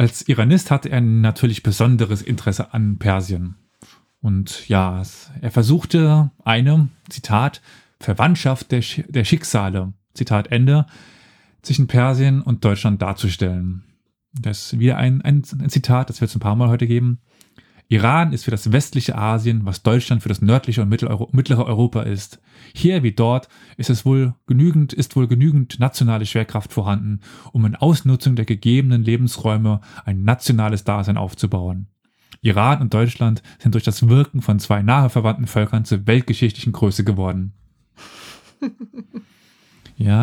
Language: German